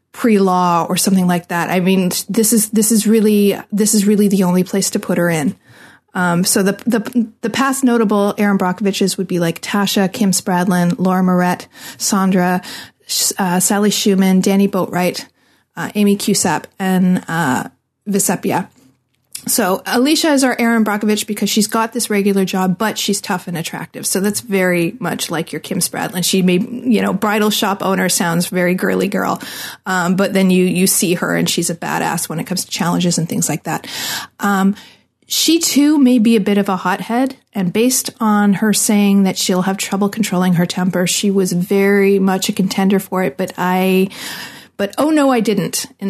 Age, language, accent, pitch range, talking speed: 30-49, English, American, 185-215 Hz, 190 wpm